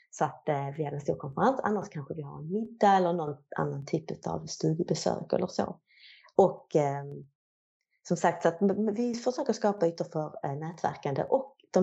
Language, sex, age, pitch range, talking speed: Swedish, female, 30-49, 150-190 Hz, 190 wpm